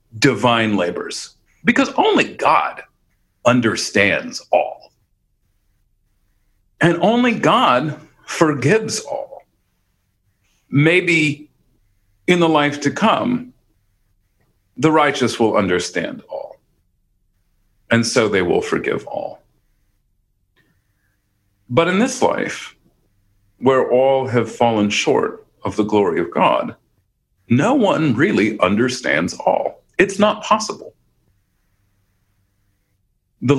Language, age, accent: English, 40-59, American